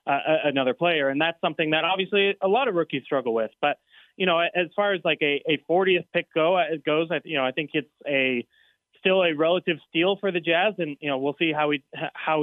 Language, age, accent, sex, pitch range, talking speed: English, 20-39, American, male, 135-165 Hz, 240 wpm